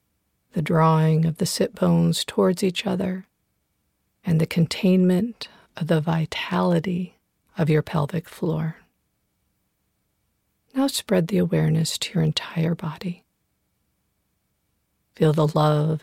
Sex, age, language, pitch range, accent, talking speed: female, 50-69, English, 160-185 Hz, American, 110 wpm